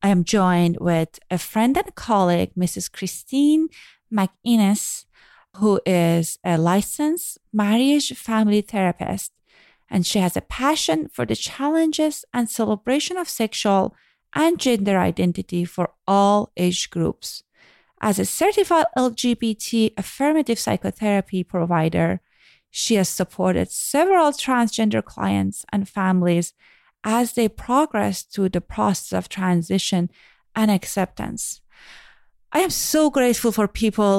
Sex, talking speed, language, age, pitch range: female, 120 wpm, English, 30-49, 185-245 Hz